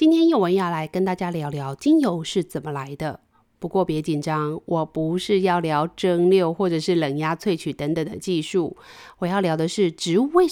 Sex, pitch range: female, 160-205 Hz